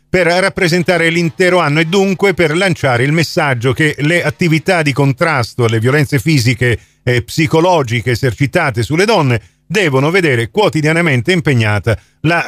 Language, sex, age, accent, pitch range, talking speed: Italian, male, 40-59, native, 145-185 Hz, 135 wpm